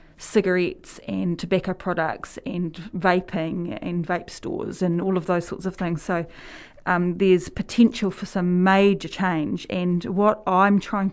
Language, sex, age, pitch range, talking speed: English, female, 30-49, 180-215 Hz, 150 wpm